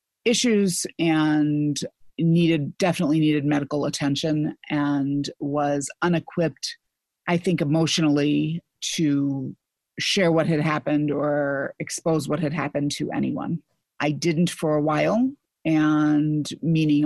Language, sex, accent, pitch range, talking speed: English, female, American, 150-175 Hz, 115 wpm